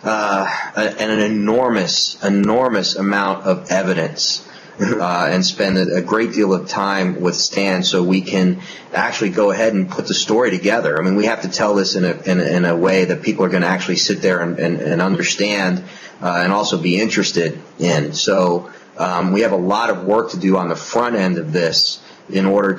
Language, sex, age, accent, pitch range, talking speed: English, male, 30-49, American, 95-115 Hz, 210 wpm